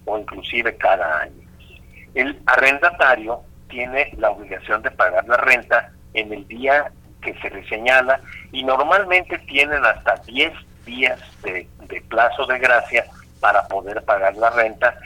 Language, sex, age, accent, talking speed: Spanish, male, 50-69, Mexican, 145 wpm